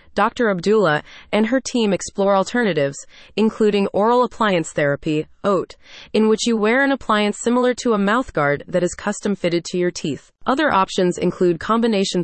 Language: English